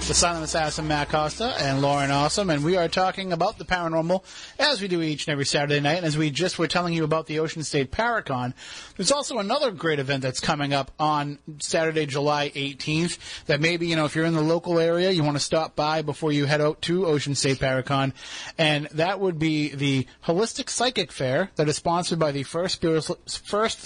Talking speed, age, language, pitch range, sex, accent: 215 wpm, 30-49, English, 145-180 Hz, male, American